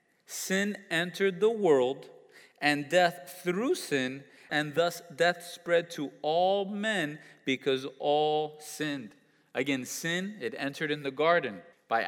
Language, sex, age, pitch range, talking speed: English, male, 20-39, 140-175 Hz, 130 wpm